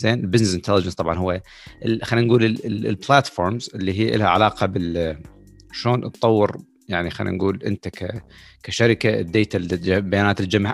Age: 30-49